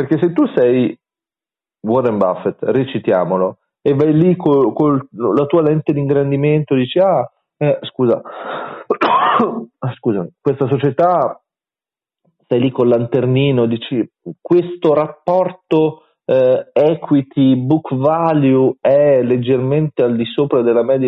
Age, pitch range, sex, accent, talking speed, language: 40-59, 95-150 Hz, male, native, 115 wpm, Italian